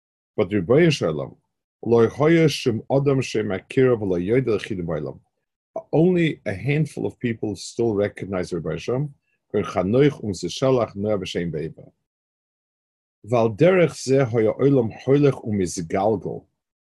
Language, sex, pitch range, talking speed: English, male, 95-130 Hz, 45 wpm